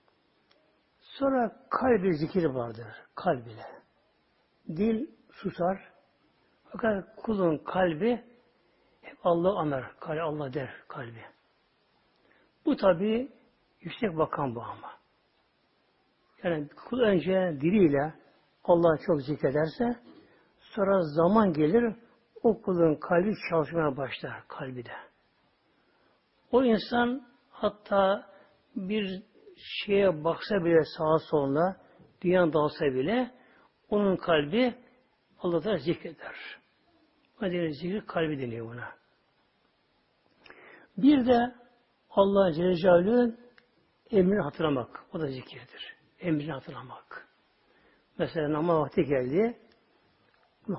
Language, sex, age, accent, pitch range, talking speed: Turkish, male, 60-79, native, 155-230 Hz, 90 wpm